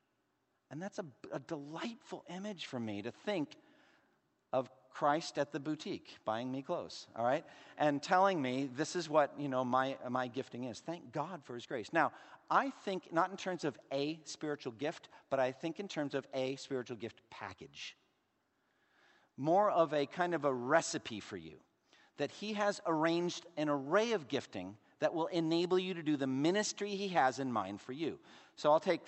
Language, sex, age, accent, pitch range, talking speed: English, male, 50-69, American, 125-160 Hz, 190 wpm